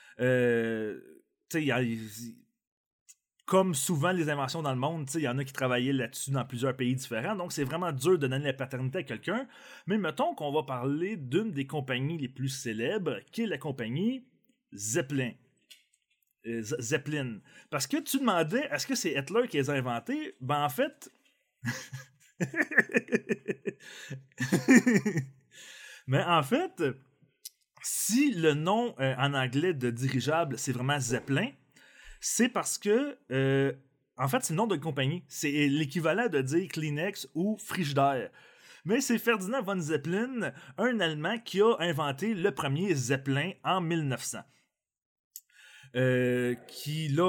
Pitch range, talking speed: 130-190 Hz, 145 wpm